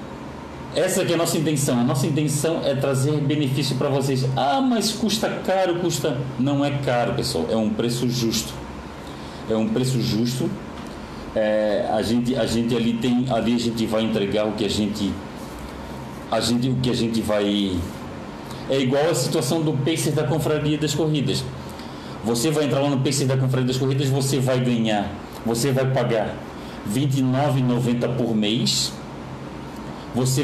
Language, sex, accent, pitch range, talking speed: Portuguese, male, Brazilian, 110-140 Hz, 165 wpm